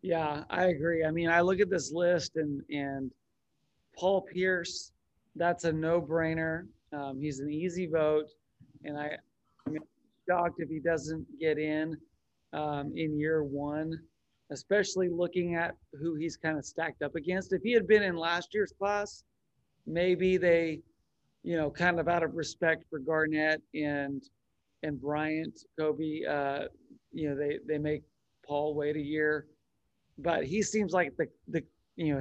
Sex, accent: male, American